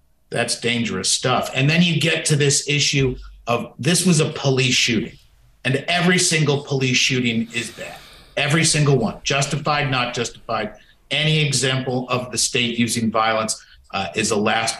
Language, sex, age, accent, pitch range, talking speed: English, male, 50-69, American, 115-150 Hz, 160 wpm